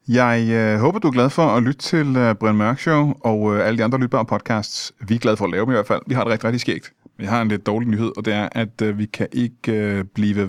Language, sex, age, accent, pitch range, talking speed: Danish, male, 30-49, native, 105-130 Hz, 285 wpm